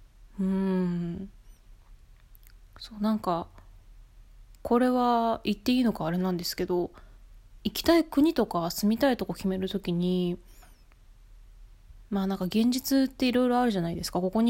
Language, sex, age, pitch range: Japanese, female, 20-39, 165-220 Hz